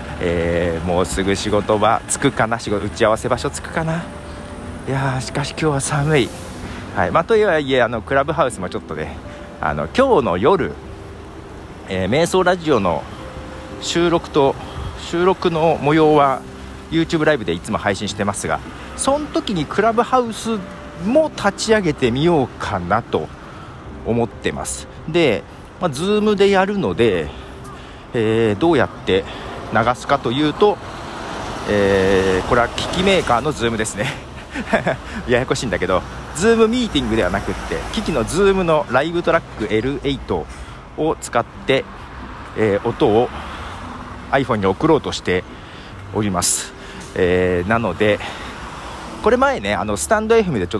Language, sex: Japanese, male